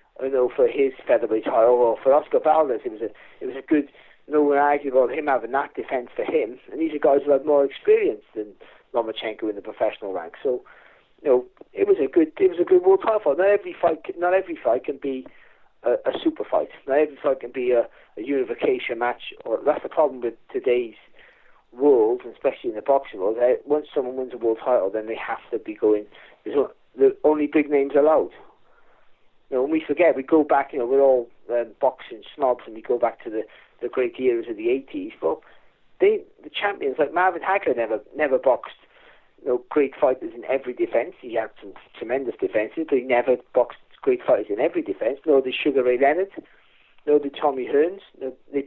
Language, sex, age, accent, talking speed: English, male, 40-59, British, 215 wpm